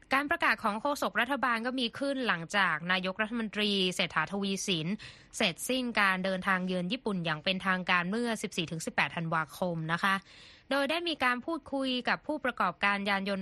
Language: Thai